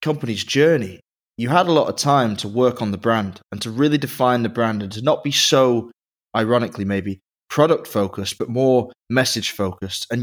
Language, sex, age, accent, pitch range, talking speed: English, male, 20-39, British, 105-130 Hz, 195 wpm